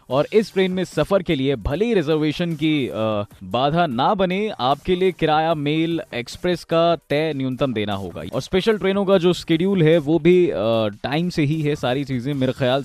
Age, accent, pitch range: 20-39, native, 125-175 Hz